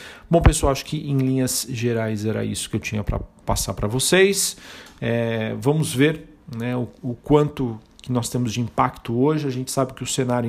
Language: Portuguese